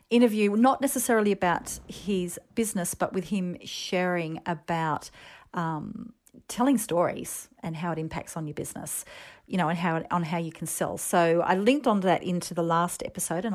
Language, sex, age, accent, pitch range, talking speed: English, female, 40-59, Australian, 175-230 Hz, 175 wpm